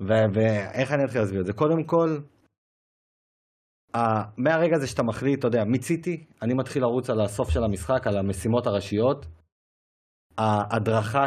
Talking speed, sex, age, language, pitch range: 145 wpm, male, 30-49, Hebrew, 105-130 Hz